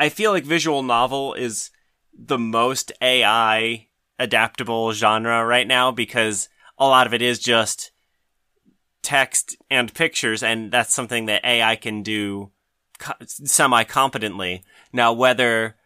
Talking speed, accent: 130 wpm, American